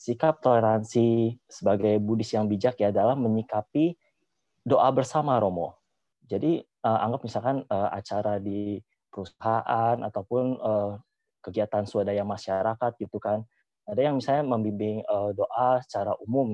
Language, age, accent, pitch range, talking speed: Indonesian, 20-39, native, 105-125 Hz, 125 wpm